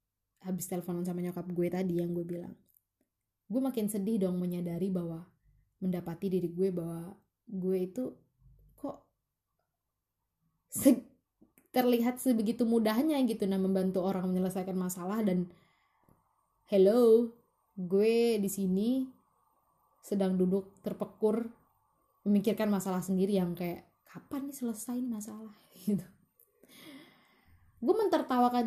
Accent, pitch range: native, 180-245 Hz